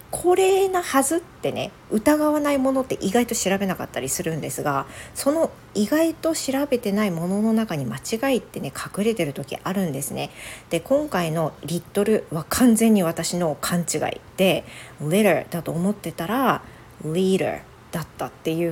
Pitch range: 160-230 Hz